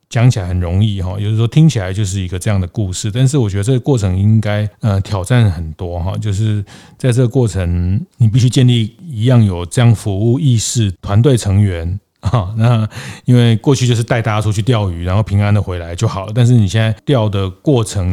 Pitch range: 95-120 Hz